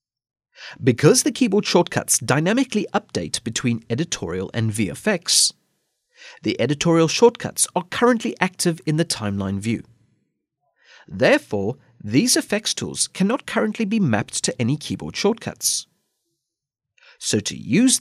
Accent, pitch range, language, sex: British, 115-180 Hz, English, male